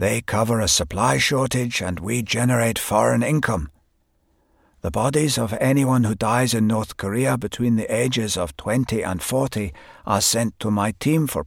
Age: 60-79